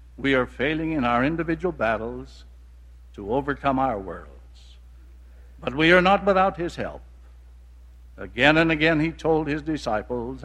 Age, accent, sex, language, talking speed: 60-79, American, male, English, 145 wpm